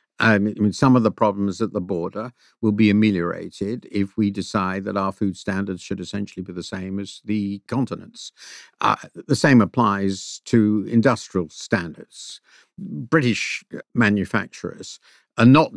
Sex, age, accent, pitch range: male, 50-69, British, 95-110 Hz